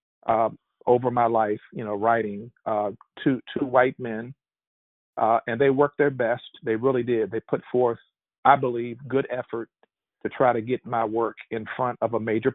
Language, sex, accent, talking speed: English, male, American, 185 wpm